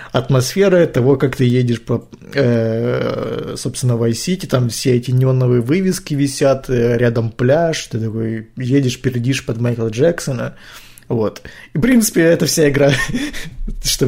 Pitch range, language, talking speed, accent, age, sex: 120-140 Hz, Russian, 140 wpm, native, 20-39, male